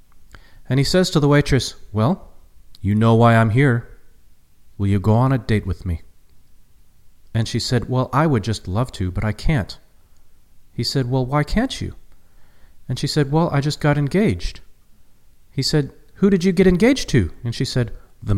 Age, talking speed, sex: 40-59, 190 wpm, male